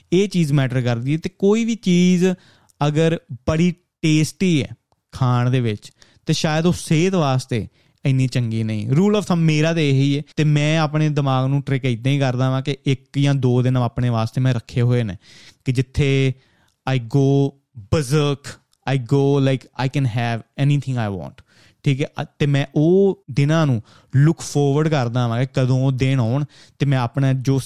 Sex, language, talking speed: male, Punjabi, 185 wpm